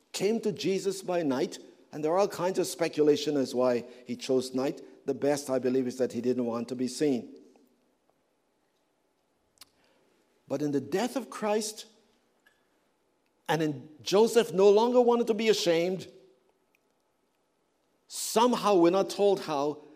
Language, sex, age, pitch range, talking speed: English, male, 60-79, 180-240 Hz, 150 wpm